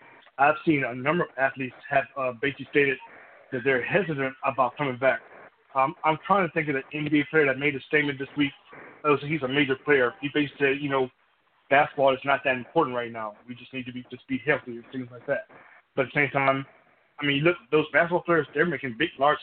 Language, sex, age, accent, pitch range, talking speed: English, male, 20-39, American, 130-150 Hz, 235 wpm